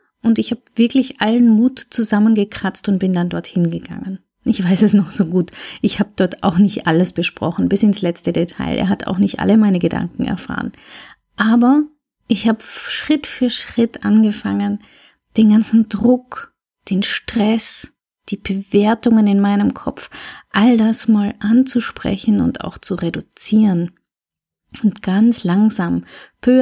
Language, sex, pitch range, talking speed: German, female, 190-230 Hz, 150 wpm